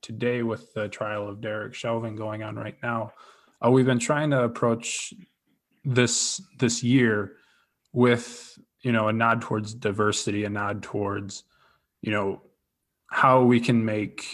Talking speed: 150 wpm